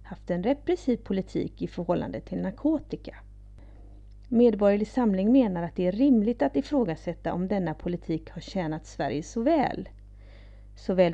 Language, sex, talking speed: Swedish, female, 140 wpm